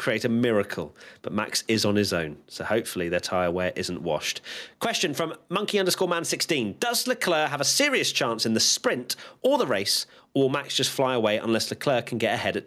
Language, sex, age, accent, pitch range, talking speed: English, male, 30-49, British, 110-140 Hz, 220 wpm